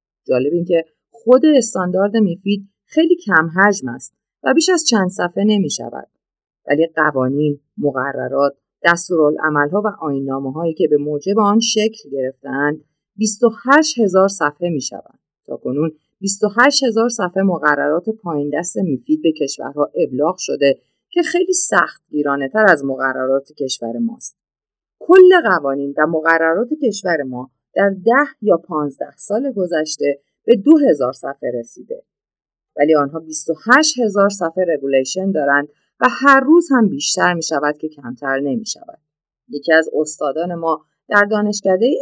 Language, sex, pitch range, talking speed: Persian, female, 145-220 Hz, 130 wpm